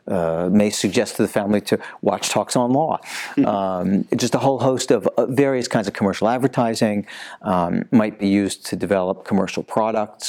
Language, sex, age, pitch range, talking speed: English, male, 50-69, 95-130 Hz, 175 wpm